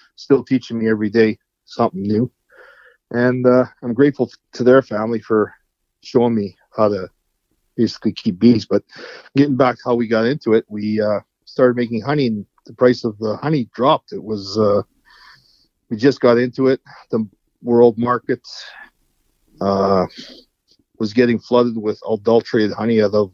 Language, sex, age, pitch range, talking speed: English, male, 40-59, 110-125 Hz, 160 wpm